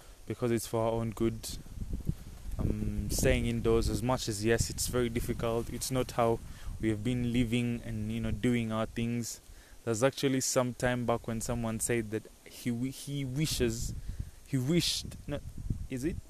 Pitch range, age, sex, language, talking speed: 110-145 Hz, 20-39, male, English, 170 wpm